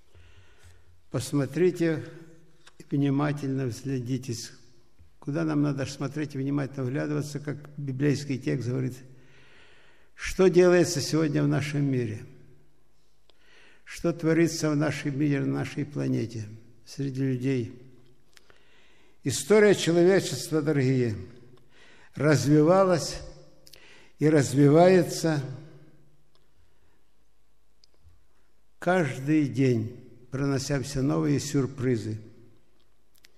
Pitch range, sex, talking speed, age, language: 125-155 Hz, male, 70 wpm, 60-79, Russian